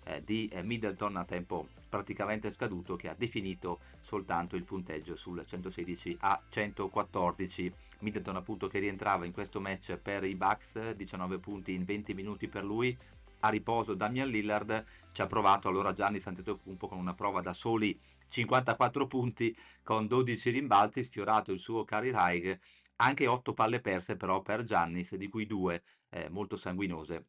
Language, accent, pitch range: Italian, native, 95-115 Hz